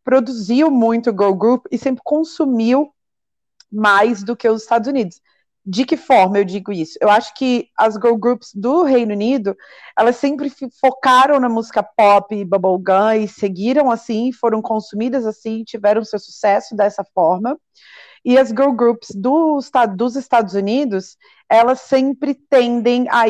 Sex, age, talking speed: female, 40-59, 150 wpm